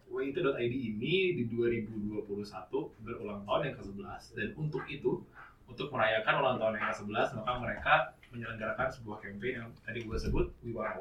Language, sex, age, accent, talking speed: Indonesian, male, 20-39, native, 145 wpm